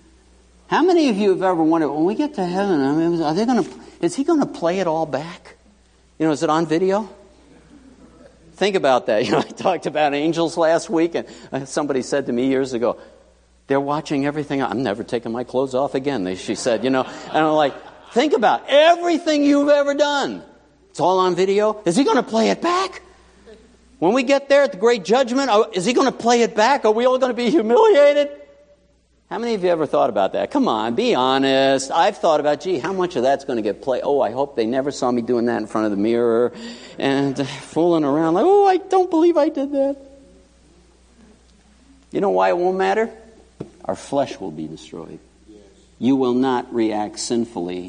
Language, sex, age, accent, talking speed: English, male, 60-79, American, 215 wpm